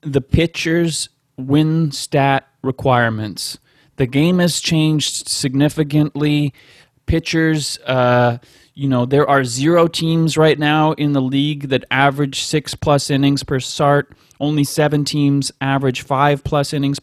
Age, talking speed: 30-49, 130 wpm